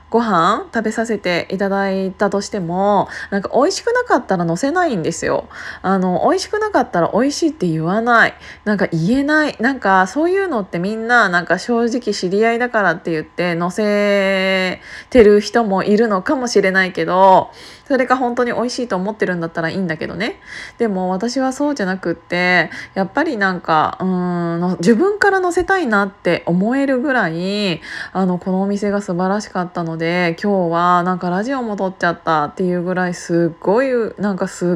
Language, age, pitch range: Japanese, 20-39, 180-235 Hz